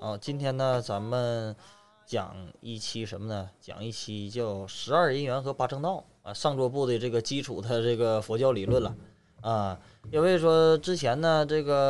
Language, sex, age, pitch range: Chinese, male, 20-39, 105-155 Hz